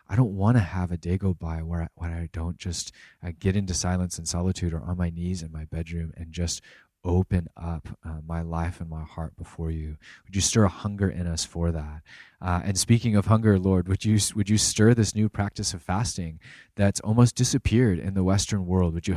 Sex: male